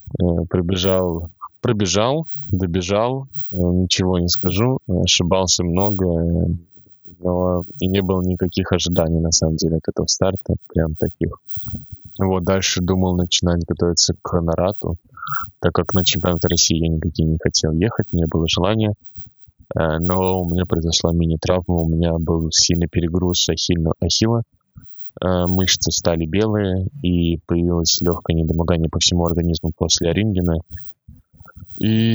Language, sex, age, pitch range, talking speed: Russian, male, 20-39, 85-95 Hz, 125 wpm